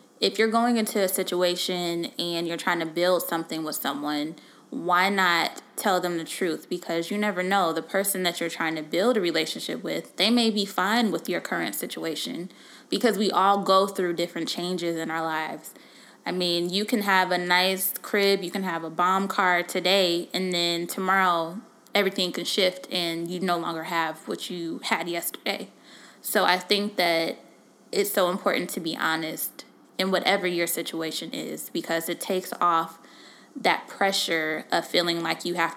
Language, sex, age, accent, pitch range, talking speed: English, female, 10-29, American, 165-195 Hz, 180 wpm